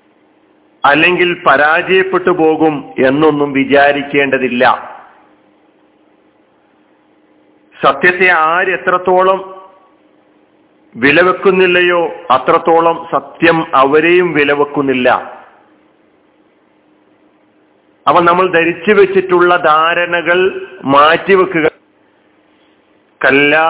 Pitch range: 155-185 Hz